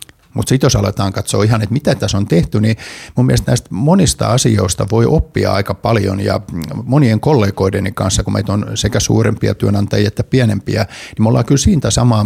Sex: male